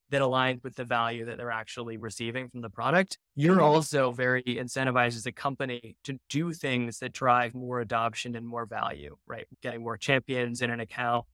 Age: 20-39